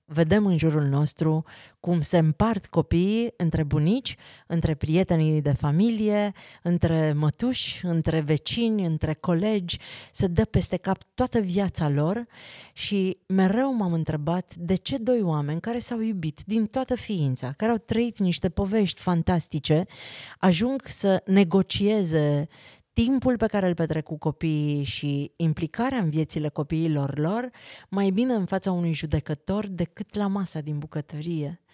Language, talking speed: Romanian, 140 wpm